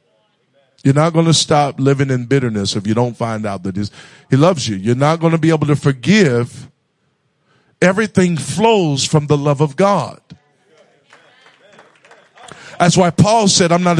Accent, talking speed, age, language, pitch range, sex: American, 165 wpm, 50-69, English, 140-190 Hz, male